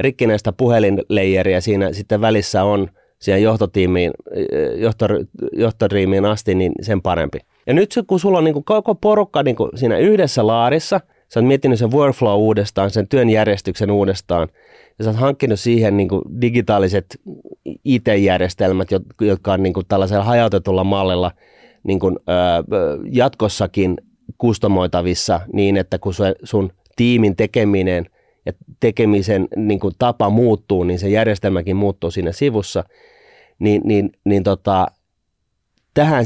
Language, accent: Finnish, native